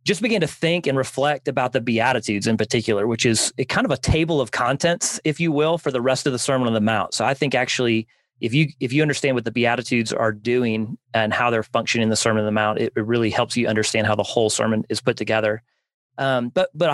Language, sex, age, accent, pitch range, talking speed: English, male, 30-49, American, 115-140 Hz, 255 wpm